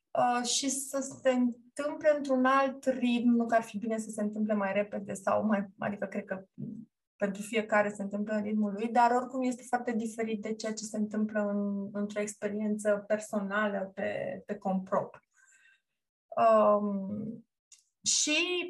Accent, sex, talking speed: native, female, 150 wpm